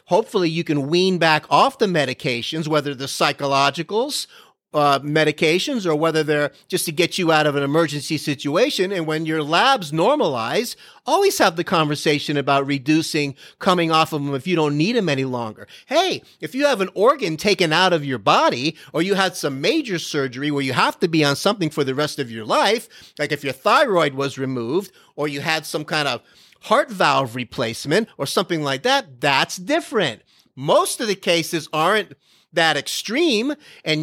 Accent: American